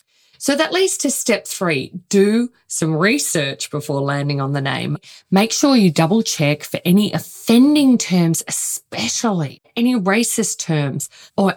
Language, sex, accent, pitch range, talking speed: English, female, Australian, 155-220 Hz, 145 wpm